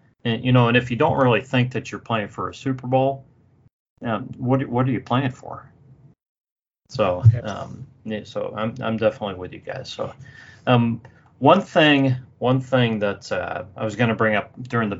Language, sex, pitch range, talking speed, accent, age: English, male, 105-130 Hz, 190 wpm, American, 30-49